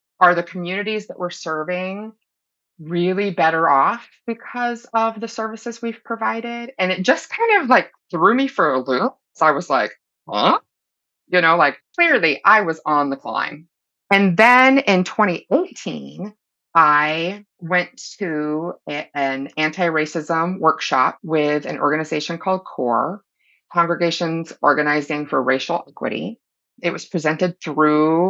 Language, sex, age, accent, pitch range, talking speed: English, female, 30-49, American, 155-230 Hz, 135 wpm